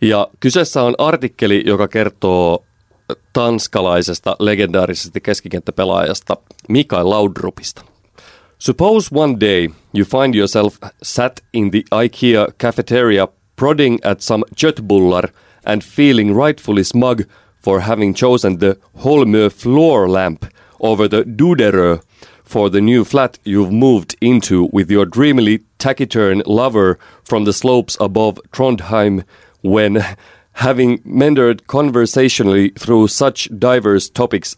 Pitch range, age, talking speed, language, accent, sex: 100-125 Hz, 30-49, 115 wpm, Finnish, native, male